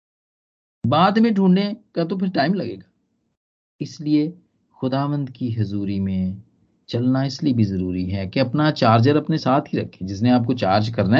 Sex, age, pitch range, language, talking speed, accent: male, 40-59, 125-200 Hz, Hindi, 155 wpm, native